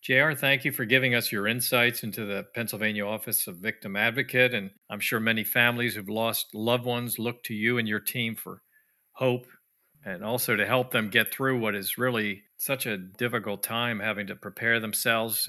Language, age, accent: English, 50-69, American